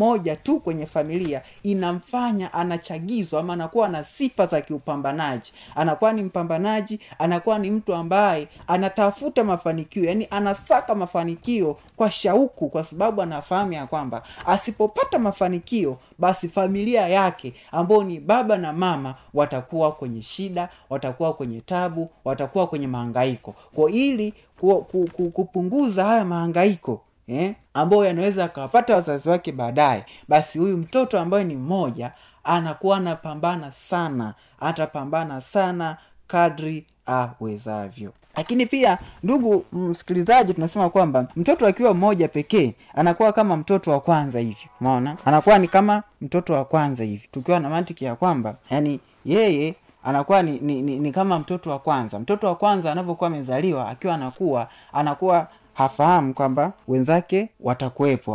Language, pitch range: Swahili, 140-195 Hz